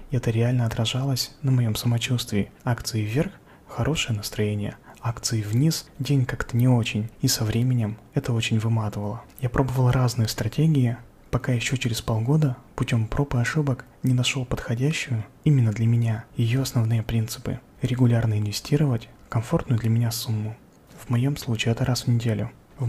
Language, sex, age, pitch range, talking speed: Russian, male, 20-39, 115-135 Hz, 150 wpm